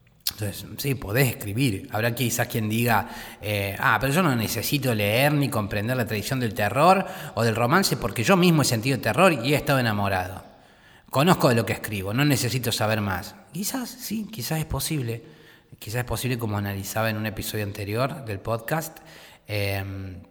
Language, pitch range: Spanish, 105-135 Hz